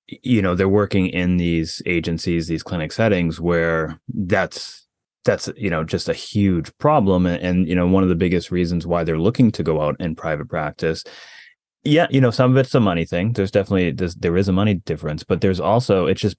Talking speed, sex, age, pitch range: 210 wpm, male, 30-49, 85-105 Hz